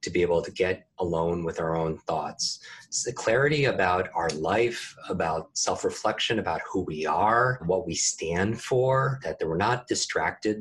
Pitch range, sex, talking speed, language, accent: 90-125 Hz, male, 165 wpm, English, American